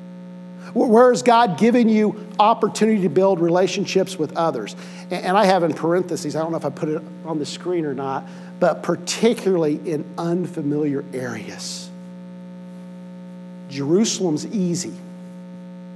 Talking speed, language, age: 130 wpm, English, 50-69